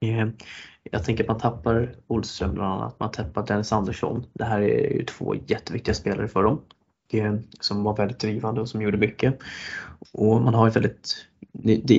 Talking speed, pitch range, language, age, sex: 180 wpm, 105-115 Hz, Swedish, 20-39, male